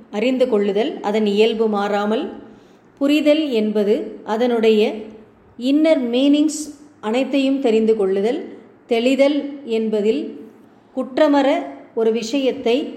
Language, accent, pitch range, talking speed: Tamil, native, 205-255 Hz, 85 wpm